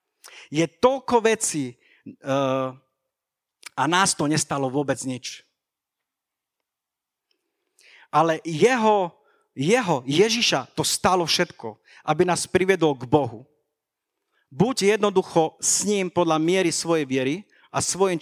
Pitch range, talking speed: 140-190 Hz, 105 wpm